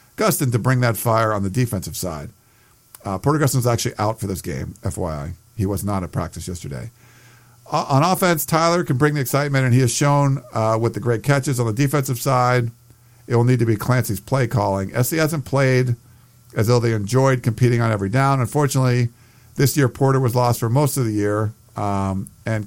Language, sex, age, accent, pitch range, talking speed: English, male, 50-69, American, 110-130 Hz, 205 wpm